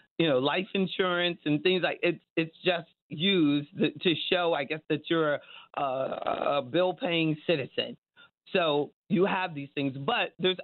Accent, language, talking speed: American, English, 165 wpm